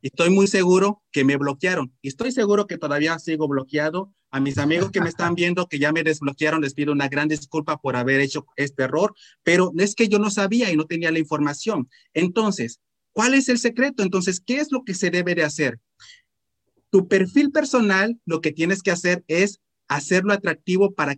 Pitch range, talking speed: 145-195 Hz, 205 wpm